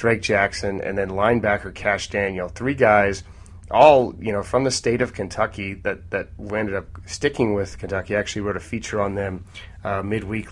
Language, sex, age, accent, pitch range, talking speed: English, male, 30-49, American, 95-105 Hz, 190 wpm